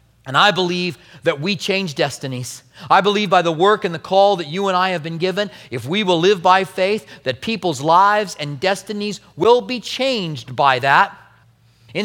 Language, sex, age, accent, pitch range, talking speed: English, male, 40-59, American, 180-210 Hz, 195 wpm